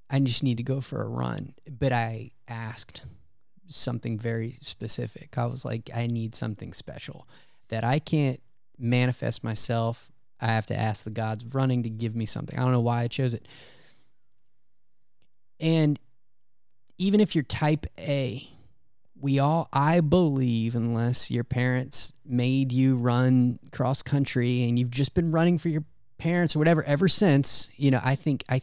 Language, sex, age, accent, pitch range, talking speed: English, male, 20-39, American, 120-145 Hz, 165 wpm